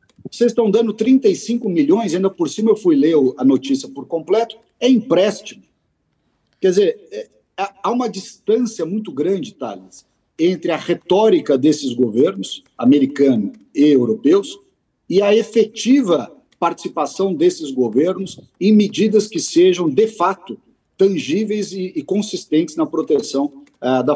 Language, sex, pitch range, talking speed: Portuguese, male, 165-255 Hz, 125 wpm